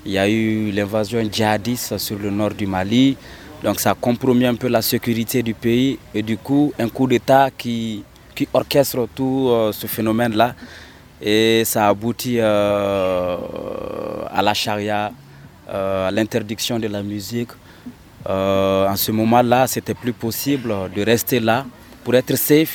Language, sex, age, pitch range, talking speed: French, male, 30-49, 105-135 Hz, 160 wpm